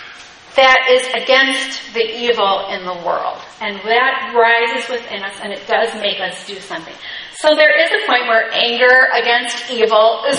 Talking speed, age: 175 wpm, 40-59